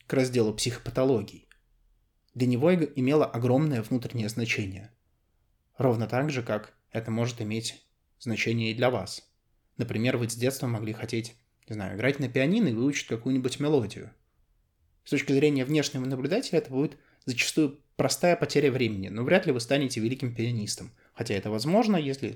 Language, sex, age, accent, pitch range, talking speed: Russian, male, 20-39, native, 110-130 Hz, 155 wpm